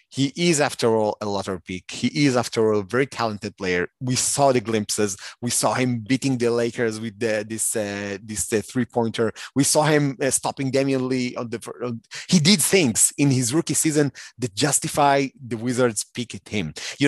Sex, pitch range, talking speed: male, 110-140 Hz, 205 wpm